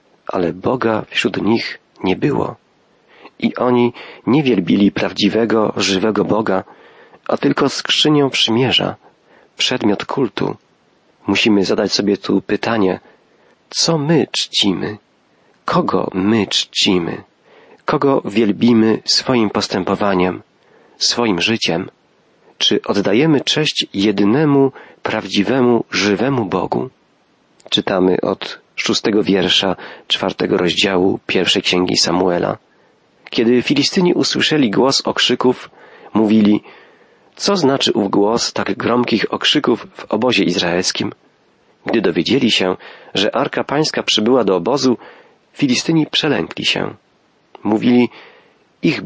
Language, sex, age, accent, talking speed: Polish, male, 40-59, native, 100 wpm